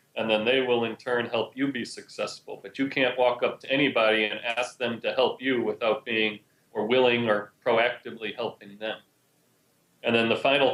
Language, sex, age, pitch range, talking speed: English, male, 40-59, 115-135 Hz, 195 wpm